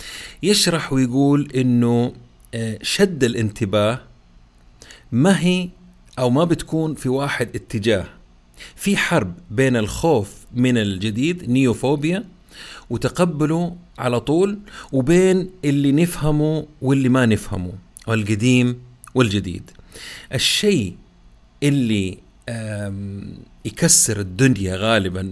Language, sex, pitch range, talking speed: Arabic, male, 110-160 Hz, 85 wpm